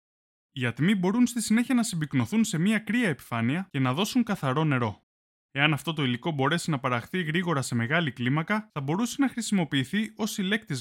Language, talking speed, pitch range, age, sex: Greek, 185 wpm, 125-205 Hz, 20-39, male